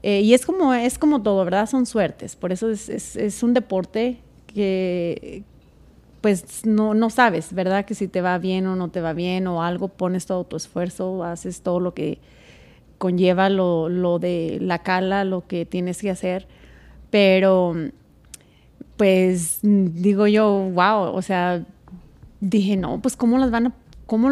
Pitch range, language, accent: 185-235 Hz, Spanish, Mexican